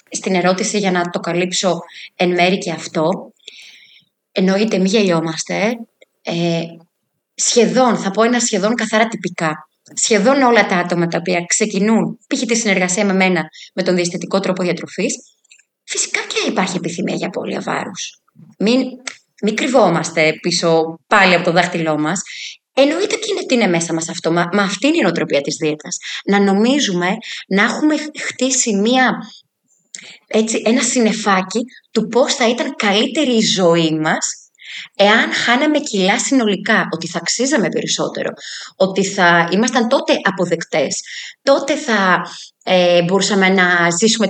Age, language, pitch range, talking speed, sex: 20-39, Greek, 175-230 Hz, 145 wpm, female